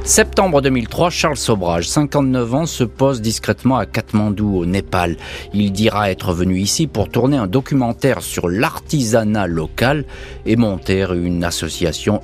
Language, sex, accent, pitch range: French, male, French, 95-125 Hz